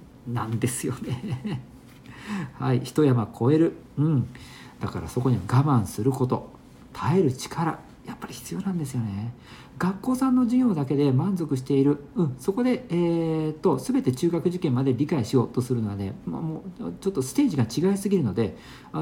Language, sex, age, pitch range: Japanese, male, 50-69, 120-175 Hz